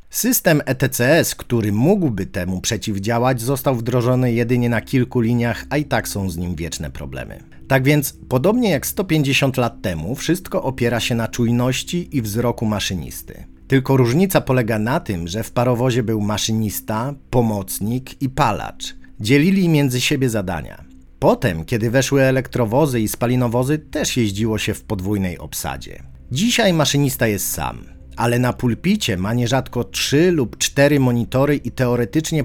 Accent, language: native, Polish